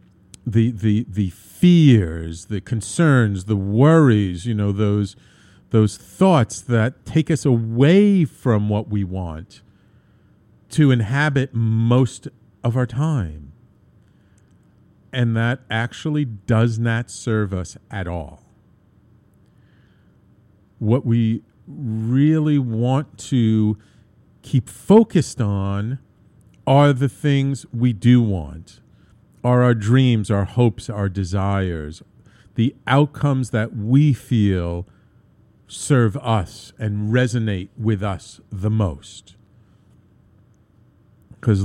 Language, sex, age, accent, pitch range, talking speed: English, male, 50-69, American, 100-125 Hz, 100 wpm